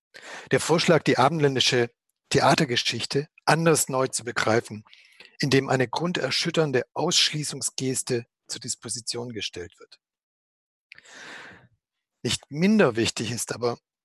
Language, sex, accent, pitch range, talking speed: German, male, German, 125-155 Hz, 95 wpm